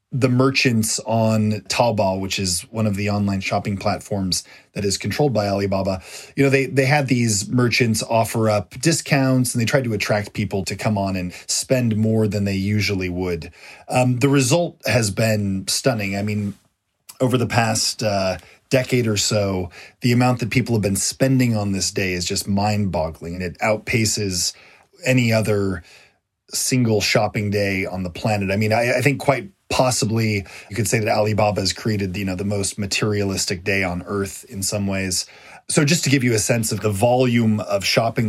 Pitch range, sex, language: 100-125 Hz, male, English